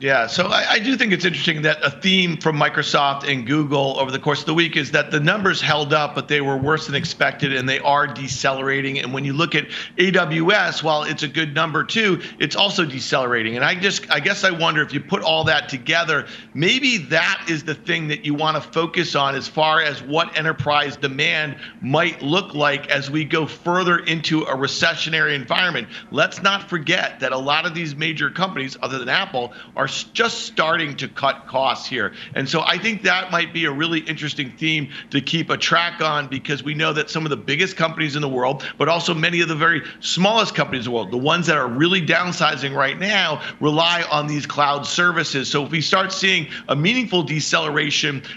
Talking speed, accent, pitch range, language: 215 wpm, American, 140-175 Hz, English